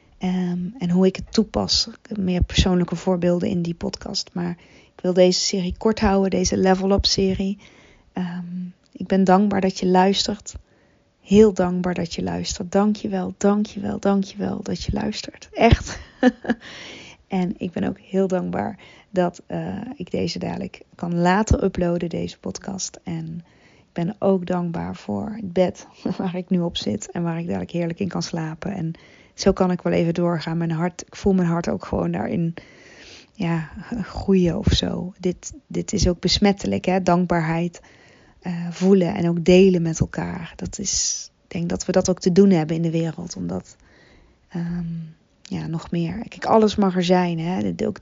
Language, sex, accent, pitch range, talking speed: Dutch, female, Dutch, 170-195 Hz, 165 wpm